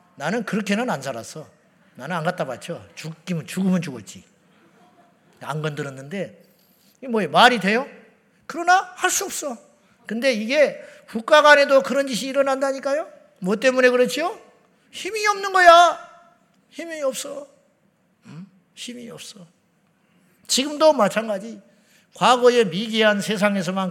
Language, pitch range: Korean, 175-240 Hz